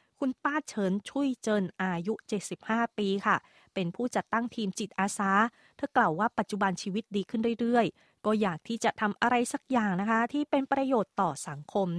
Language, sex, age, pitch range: Thai, female, 20-39, 190-230 Hz